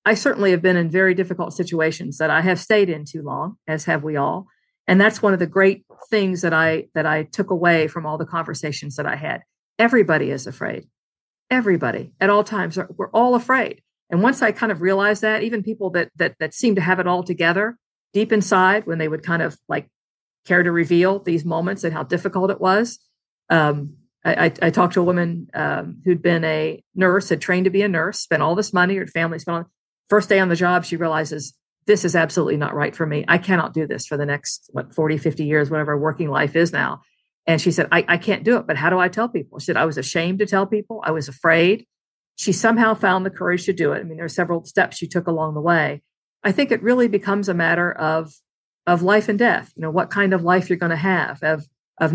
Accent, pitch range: American, 160-195 Hz